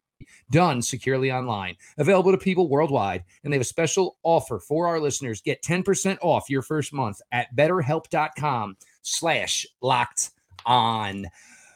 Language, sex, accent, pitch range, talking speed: English, male, American, 110-140 Hz, 140 wpm